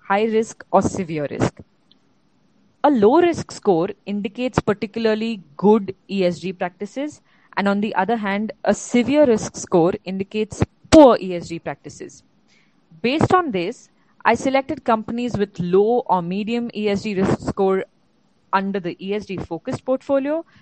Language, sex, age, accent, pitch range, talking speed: English, female, 20-39, Indian, 185-240 Hz, 130 wpm